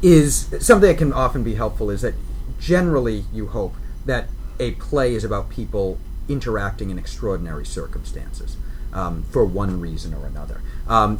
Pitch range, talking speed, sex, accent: 90-115 Hz, 155 wpm, male, American